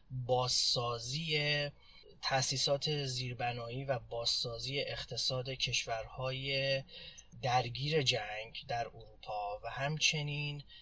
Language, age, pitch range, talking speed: Persian, 30-49, 120-145 Hz, 70 wpm